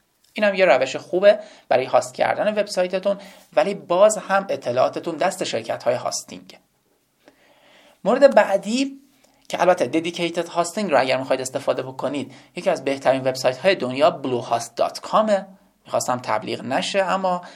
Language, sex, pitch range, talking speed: Persian, male, 135-200 Hz, 135 wpm